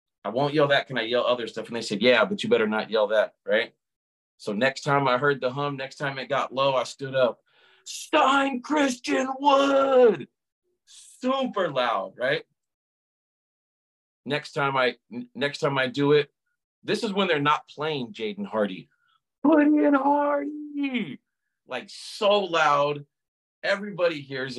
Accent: American